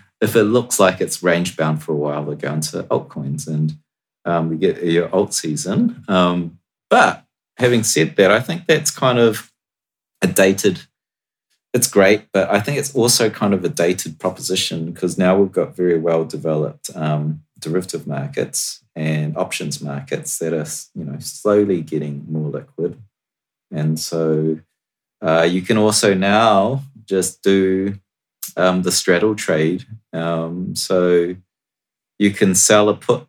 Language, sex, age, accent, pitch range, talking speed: English, male, 30-49, Australian, 80-105 Hz, 150 wpm